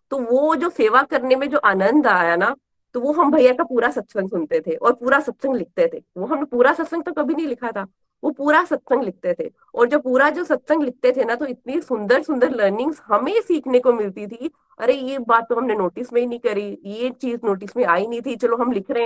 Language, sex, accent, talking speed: Hindi, female, native, 240 wpm